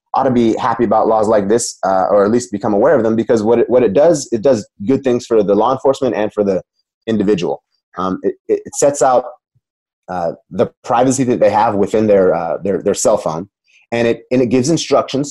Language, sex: English, male